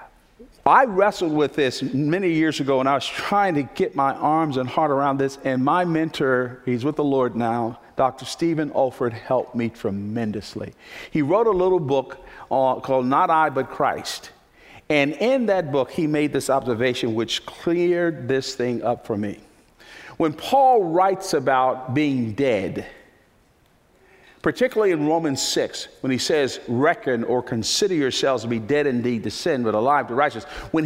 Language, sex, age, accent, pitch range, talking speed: English, male, 50-69, American, 130-165 Hz, 165 wpm